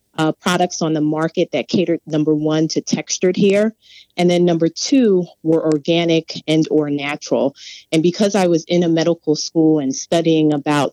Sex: female